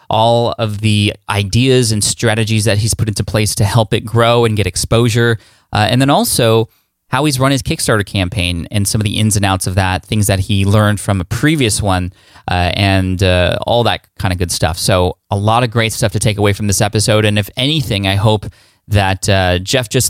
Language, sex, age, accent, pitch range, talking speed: English, male, 20-39, American, 100-115 Hz, 225 wpm